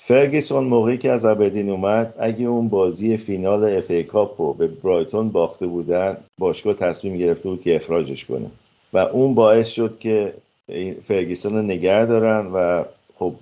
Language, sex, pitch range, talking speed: Persian, male, 85-105 Hz, 150 wpm